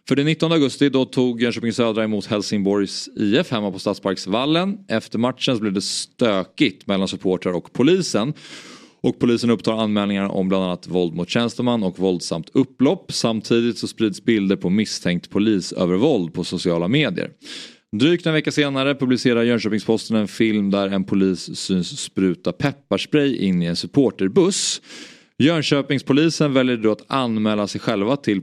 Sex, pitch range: male, 95-140 Hz